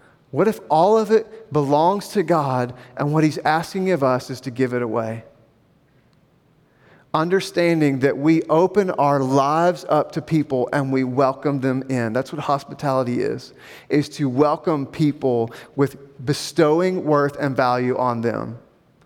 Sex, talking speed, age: male, 150 wpm, 30-49